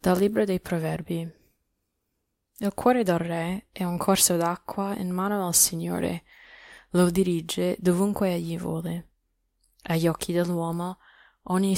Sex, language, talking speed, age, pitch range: female, Italian, 125 wpm, 10-29, 165-190 Hz